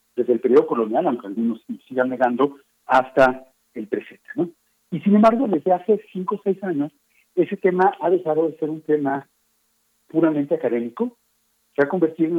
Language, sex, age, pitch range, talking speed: Spanish, male, 50-69, 125-195 Hz, 170 wpm